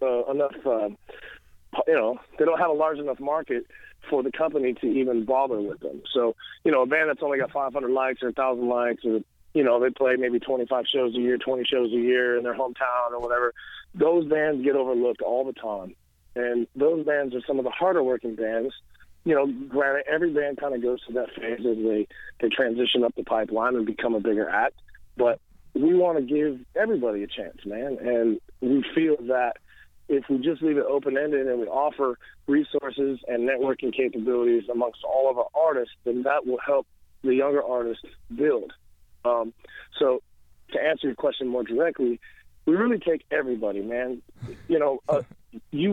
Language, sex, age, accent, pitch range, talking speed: English, male, 40-59, American, 120-150 Hz, 195 wpm